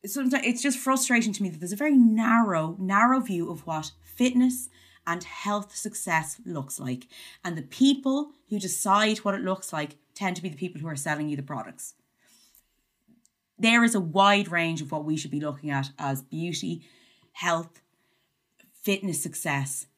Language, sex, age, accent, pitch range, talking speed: English, female, 20-39, Irish, 155-210 Hz, 175 wpm